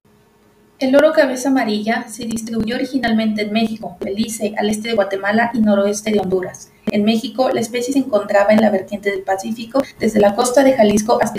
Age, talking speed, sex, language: 30-49, 185 wpm, female, Spanish